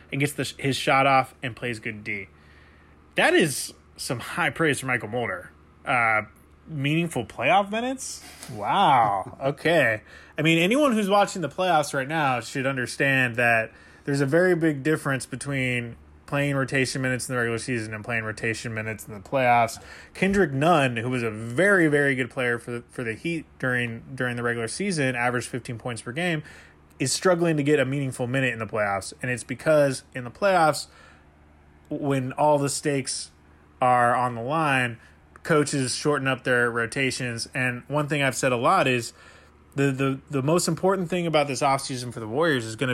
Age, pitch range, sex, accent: 20-39, 110-140 Hz, male, American